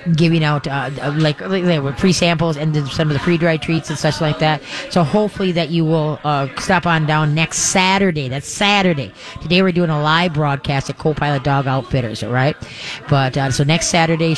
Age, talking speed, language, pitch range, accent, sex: 30-49, 215 wpm, English, 150-175 Hz, American, female